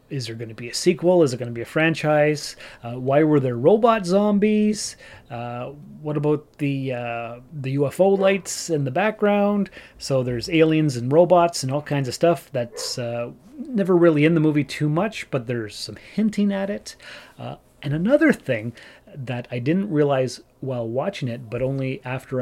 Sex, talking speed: male, 185 wpm